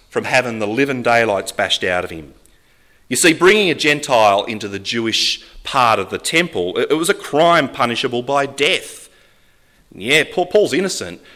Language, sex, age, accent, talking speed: English, male, 30-49, Australian, 165 wpm